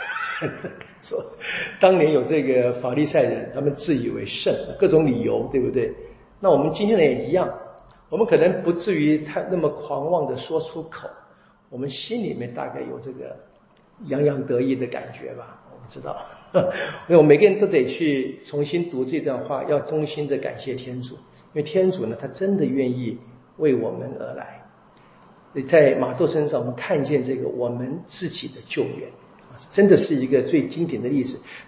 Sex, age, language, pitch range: male, 50-69, Chinese, 130-185 Hz